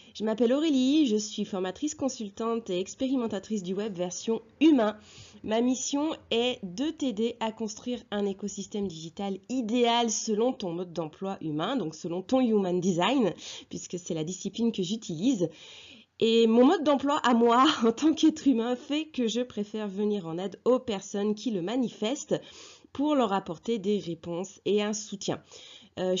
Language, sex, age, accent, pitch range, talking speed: French, female, 30-49, French, 185-245 Hz, 165 wpm